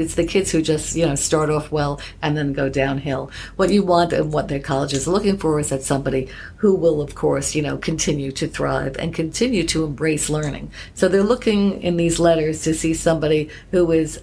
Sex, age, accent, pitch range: female, 50-69, American, 140-165 Hz